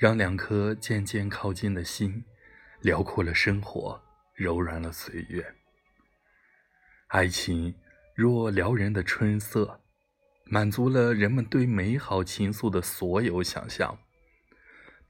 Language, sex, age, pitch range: Chinese, male, 20-39, 90-110 Hz